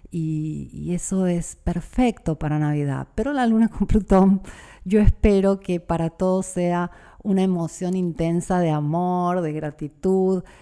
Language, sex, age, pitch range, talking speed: Spanish, female, 40-59, 150-185 Hz, 140 wpm